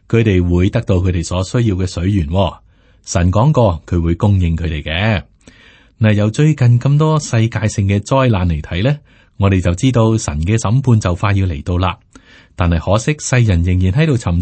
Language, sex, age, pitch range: Chinese, male, 30-49, 90-120 Hz